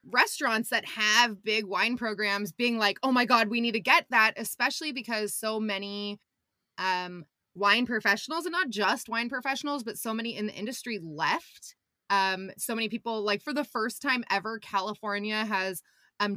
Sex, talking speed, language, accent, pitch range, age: female, 175 wpm, English, American, 200-240 Hz, 20-39